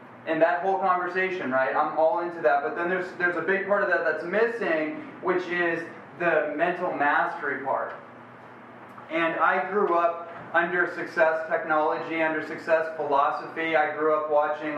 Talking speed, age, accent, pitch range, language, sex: 160 wpm, 30-49, American, 140-160 Hz, English, male